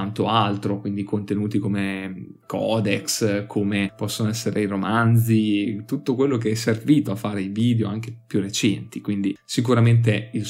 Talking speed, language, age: 145 wpm, Italian, 20-39